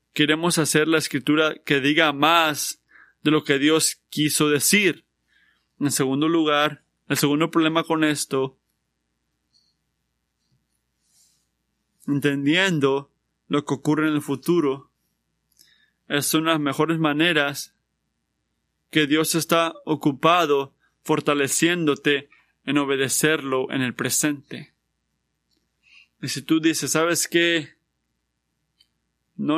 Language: Spanish